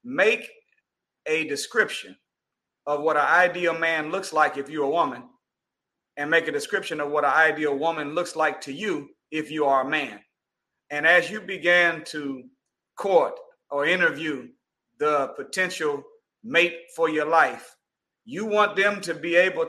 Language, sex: English, male